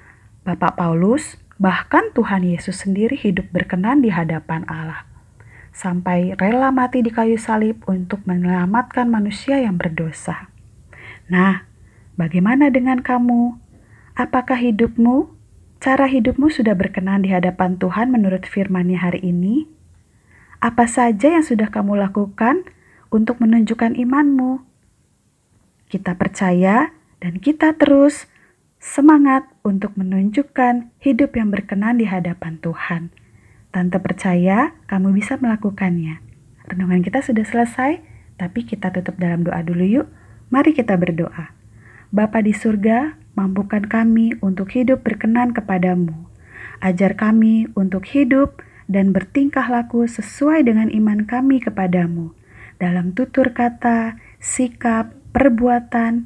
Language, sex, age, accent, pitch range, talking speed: Indonesian, female, 30-49, native, 180-245 Hz, 115 wpm